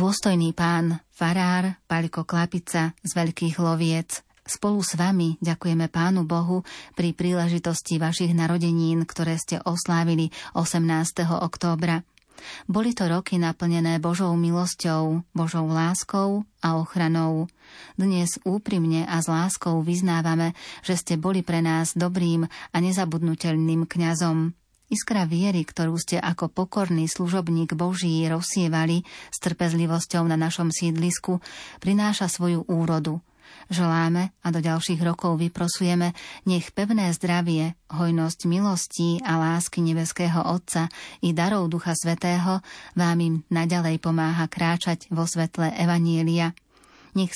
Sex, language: female, Slovak